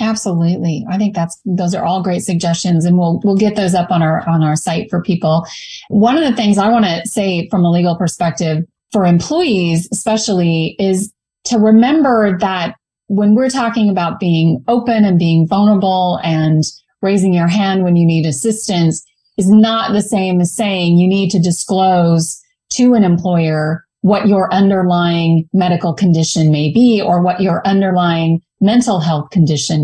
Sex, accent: female, American